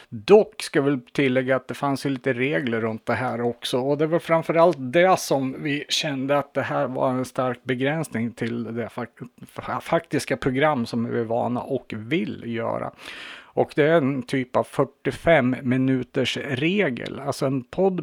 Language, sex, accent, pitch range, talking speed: Swedish, male, Norwegian, 120-150 Hz, 175 wpm